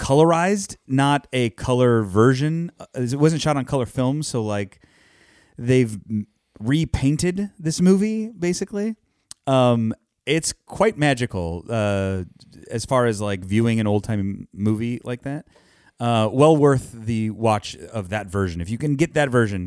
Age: 30-49